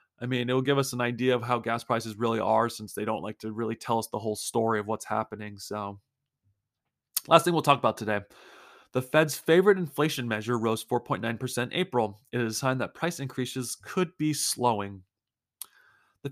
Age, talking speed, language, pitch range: 20-39, 200 wpm, English, 115-140 Hz